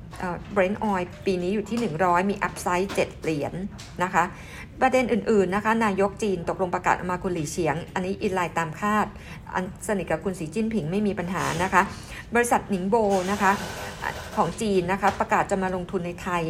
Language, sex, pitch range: Thai, female, 180-215 Hz